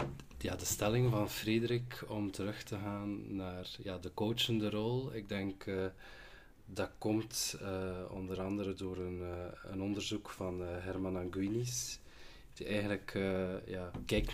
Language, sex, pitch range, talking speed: Dutch, male, 95-115 Hz, 150 wpm